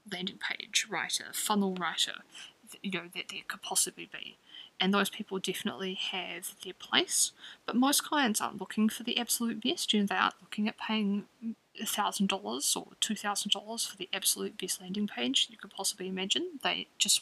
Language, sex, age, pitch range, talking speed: English, female, 10-29, 195-245 Hz, 180 wpm